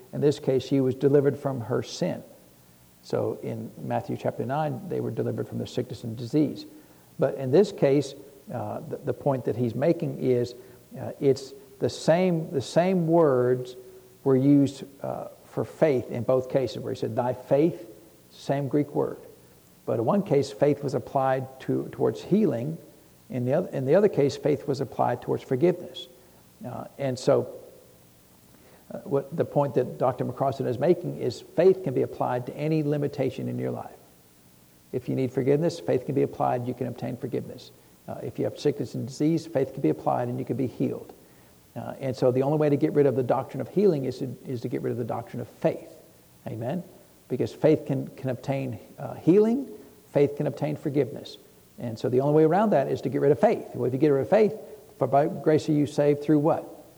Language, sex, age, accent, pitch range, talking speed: English, male, 60-79, American, 125-150 Hz, 205 wpm